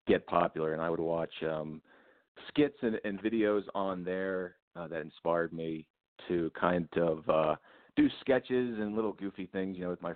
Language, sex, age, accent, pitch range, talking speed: English, male, 40-59, American, 80-95 Hz, 185 wpm